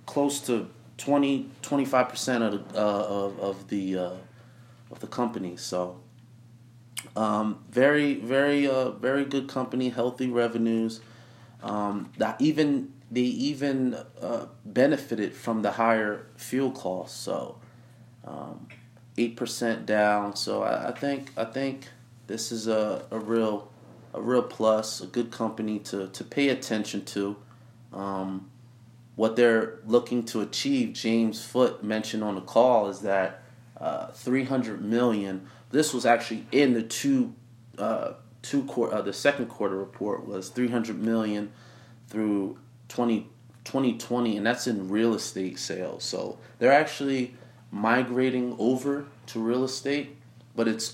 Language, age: English, 30-49